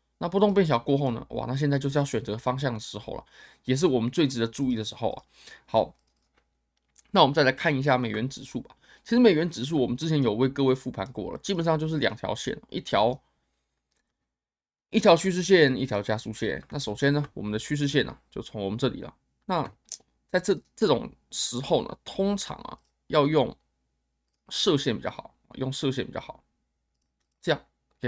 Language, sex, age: Chinese, male, 20-39